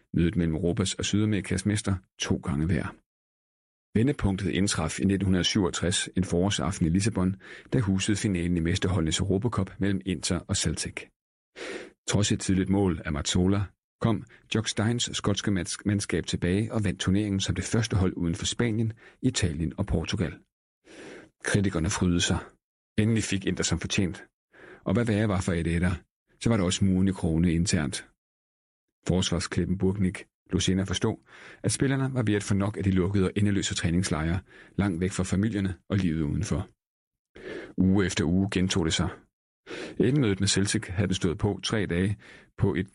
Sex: male